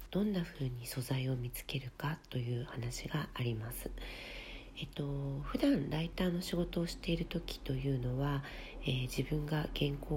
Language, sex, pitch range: Japanese, female, 125-160 Hz